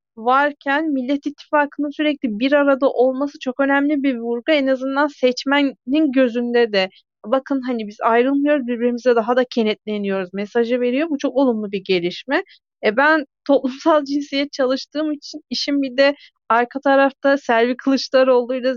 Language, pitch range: Turkish, 230-280 Hz